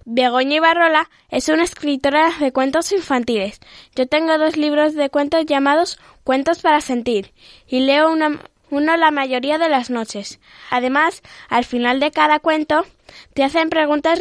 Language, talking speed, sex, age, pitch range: Spanish, 150 wpm, female, 10-29, 250-300 Hz